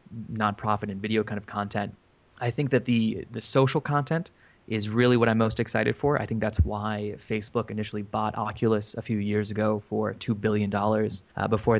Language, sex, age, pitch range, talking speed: English, male, 20-39, 105-115 Hz, 190 wpm